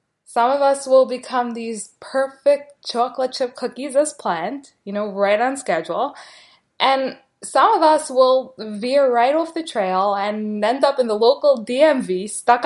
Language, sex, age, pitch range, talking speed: English, female, 20-39, 210-270 Hz, 165 wpm